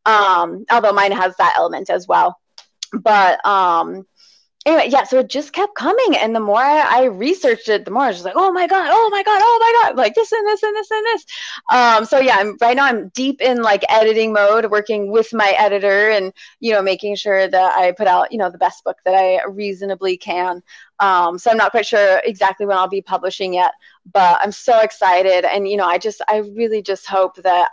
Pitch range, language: 190-230 Hz, English